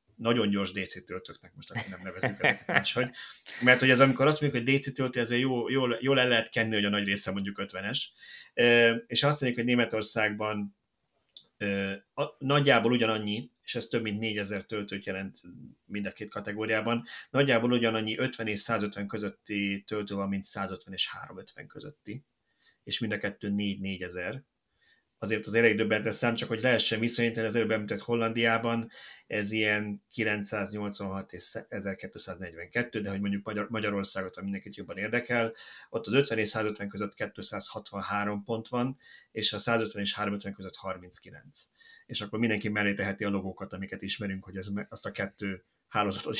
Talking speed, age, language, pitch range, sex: 165 wpm, 30-49, Hungarian, 100-115 Hz, male